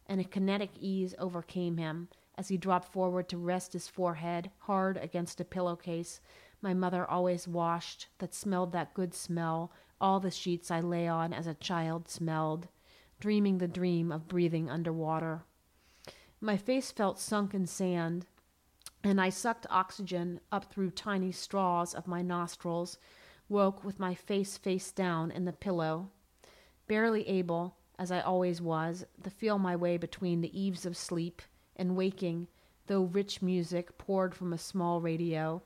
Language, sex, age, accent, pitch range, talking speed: English, female, 40-59, American, 170-190 Hz, 160 wpm